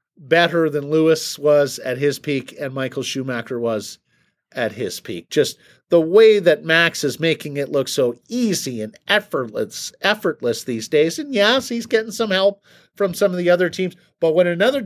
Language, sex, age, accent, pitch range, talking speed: English, male, 50-69, American, 135-180 Hz, 180 wpm